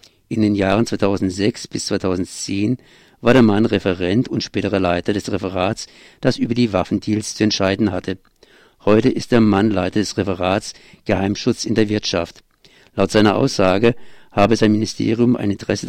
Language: German